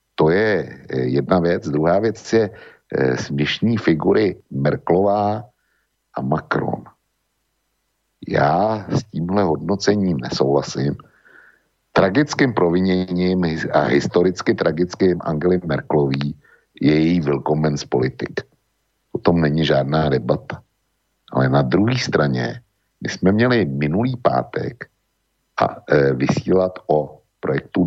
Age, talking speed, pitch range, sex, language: 60-79, 105 wpm, 75-90 Hz, male, Slovak